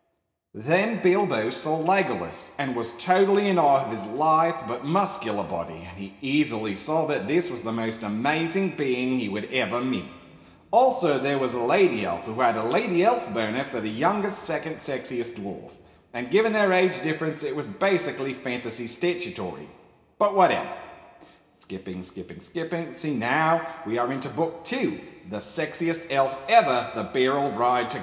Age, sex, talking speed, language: 40-59, male, 165 wpm, English